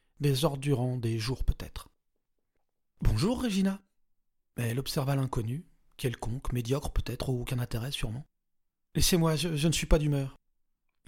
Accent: French